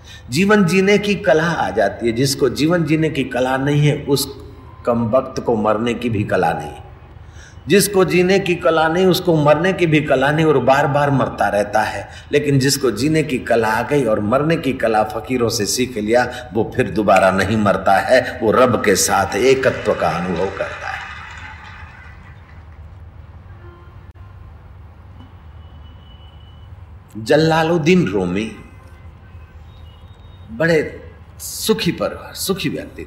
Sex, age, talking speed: male, 50-69, 140 wpm